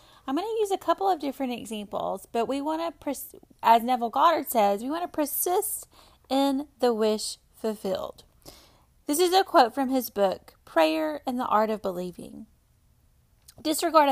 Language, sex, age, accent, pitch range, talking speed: English, female, 30-49, American, 200-285 Hz, 165 wpm